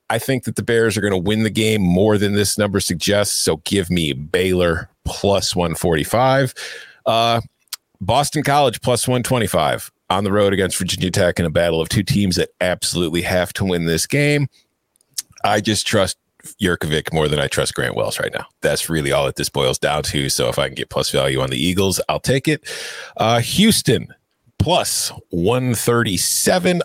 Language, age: English, 40-59